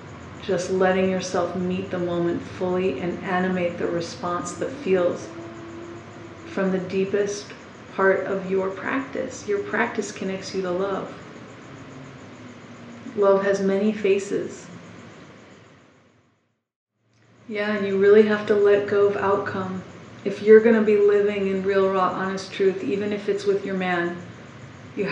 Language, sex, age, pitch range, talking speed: English, female, 40-59, 175-205 Hz, 135 wpm